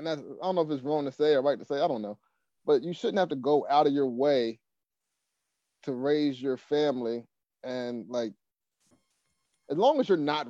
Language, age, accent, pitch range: English, 30-49, American, 125-150 Hz